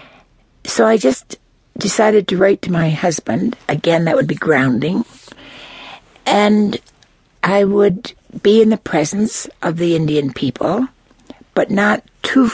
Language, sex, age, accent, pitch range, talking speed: English, female, 60-79, American, 165-240 Hz, 135 wpm